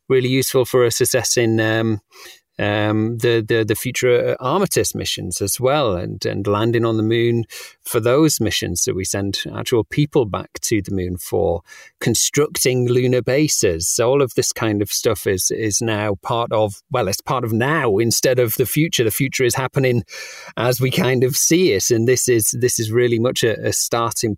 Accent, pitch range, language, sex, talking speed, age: British, 100-135 Hz, English, male, 195 wpm, 40-59